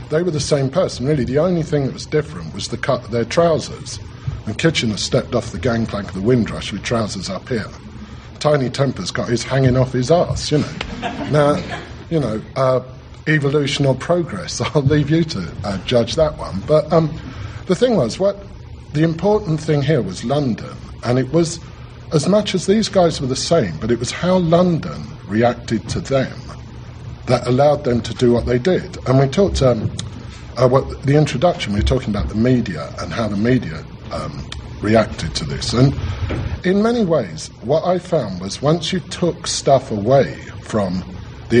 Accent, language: British, English